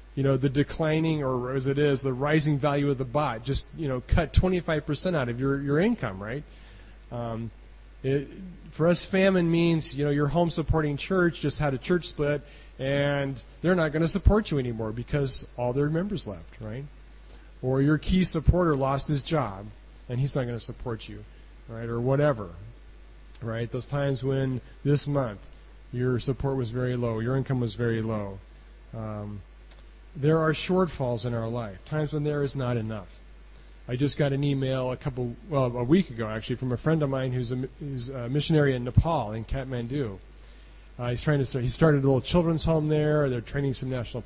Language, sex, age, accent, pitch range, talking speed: English, male, 30-49, American, 120-150 Hz, 190 wpm